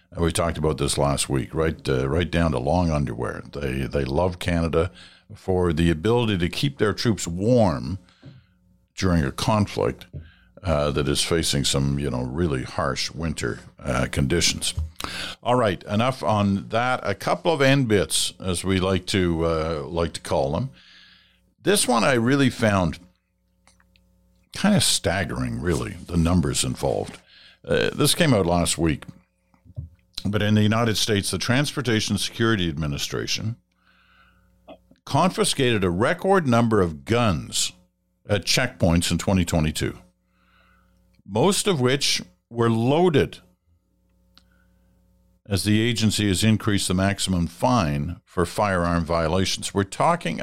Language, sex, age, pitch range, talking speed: English, male, 60-79, 85-110 Hz, 135 wpm